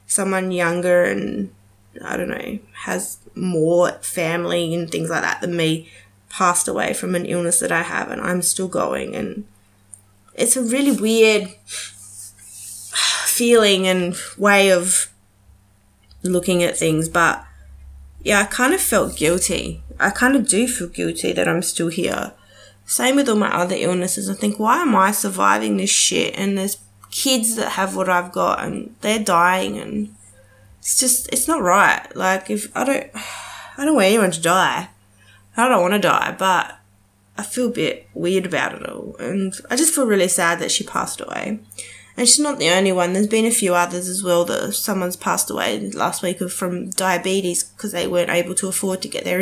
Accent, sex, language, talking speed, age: Australian, female, English, 185 wpm, 20-39